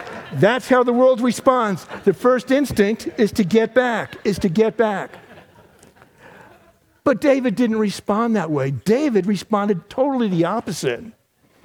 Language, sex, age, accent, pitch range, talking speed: English, male, 60-79, American, 155-215 Hz, 140 wpm